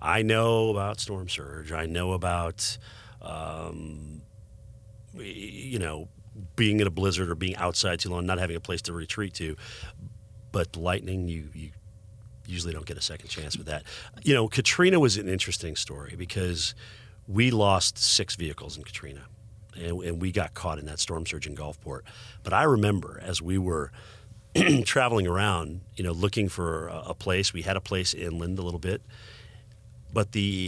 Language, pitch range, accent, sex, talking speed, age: English, 85-110 Hz, American, male, 175 wpm, 40-59